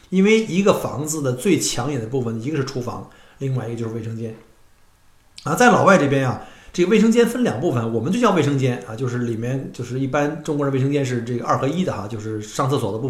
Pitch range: 120-155 Hz